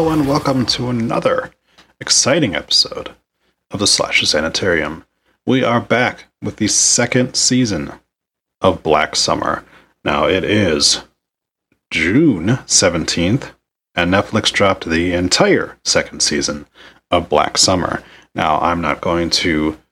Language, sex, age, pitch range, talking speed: English, male, 30-49, 95-135 Hz, 125 wpm